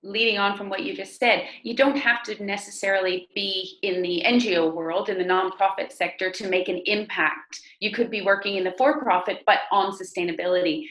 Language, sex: English, female